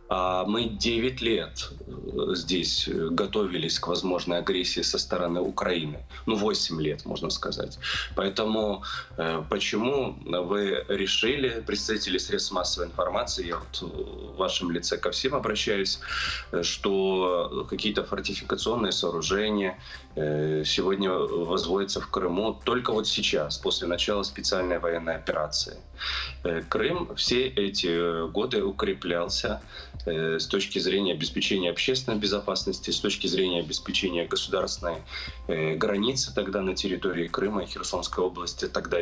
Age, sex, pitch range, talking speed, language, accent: 20-39, male, 85-110 Hz, 115 wpm, Russian, native